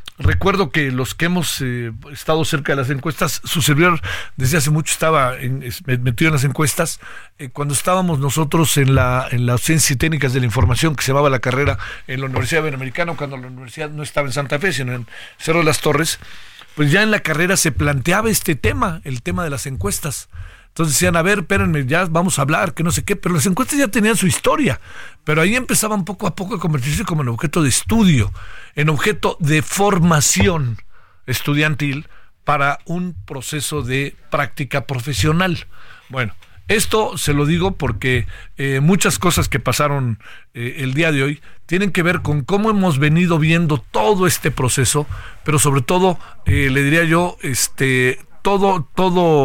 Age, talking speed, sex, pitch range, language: 50-69, 185 wpm, male, 130-170 Hz, Spanish